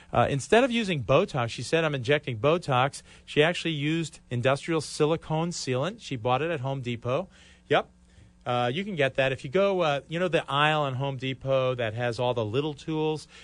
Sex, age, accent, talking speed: male, 40-59, American, 200 wpm